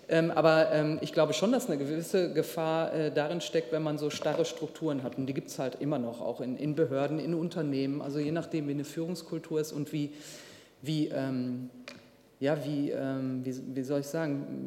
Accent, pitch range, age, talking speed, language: German, 140-160 Hz, 40-59, 170 wpm, German